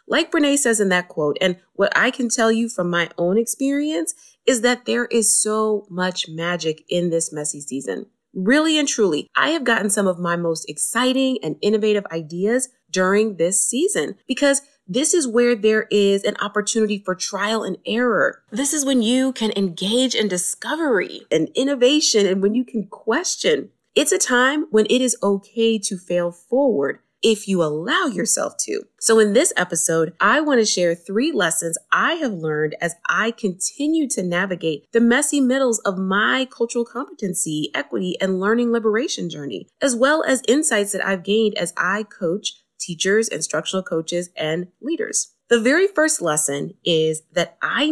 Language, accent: English, American